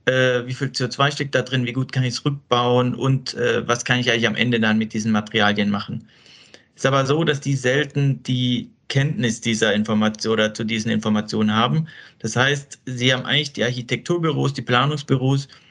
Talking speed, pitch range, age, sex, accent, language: 190 wpm, 120-140 Hz, 40-59, male, German, German